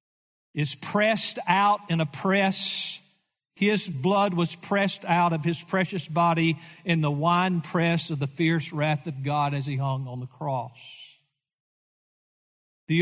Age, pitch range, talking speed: 50-69, 160-225 Hz, 145 wpm